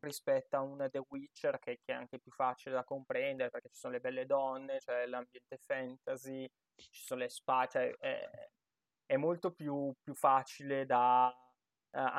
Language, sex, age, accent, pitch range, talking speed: Italian, male, 20-39, native, 130-155 Hz, 175 wpm